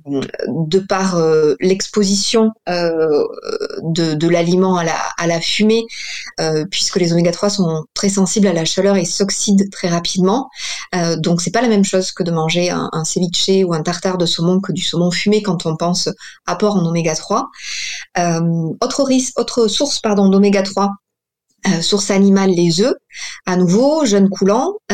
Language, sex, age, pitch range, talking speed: French, female, 20-39, 175-210 Hz, 175 wpm